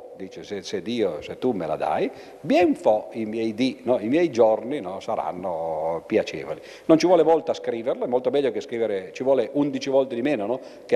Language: Italian